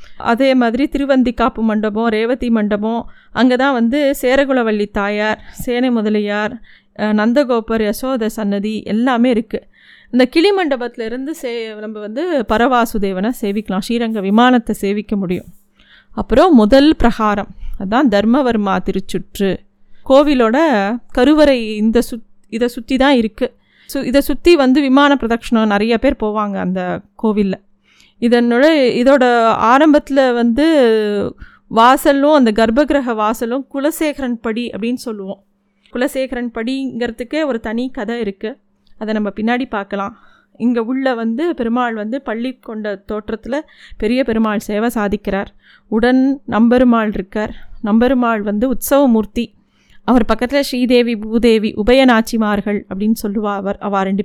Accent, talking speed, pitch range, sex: native, 115 wpm, 215-255 Hz, female